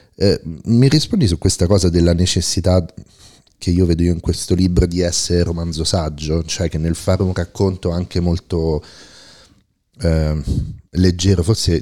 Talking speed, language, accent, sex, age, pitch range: 150 wpm, Italian, native, male, 30-49, 80-95 Hz